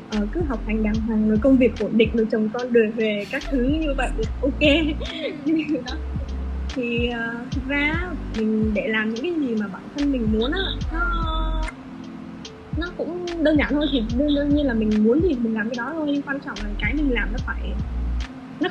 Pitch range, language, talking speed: 220-275 Hz, Vietnamese, 210 wpm